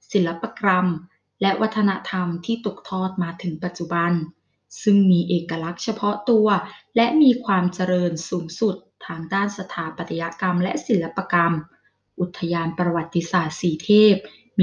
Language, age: Thai, 20-39